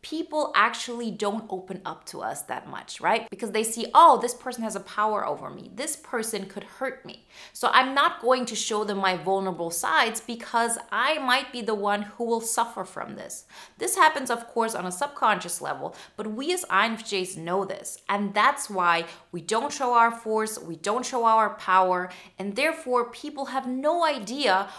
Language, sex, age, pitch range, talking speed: English, female, 30-49, 185-235 Hz, 195 wpm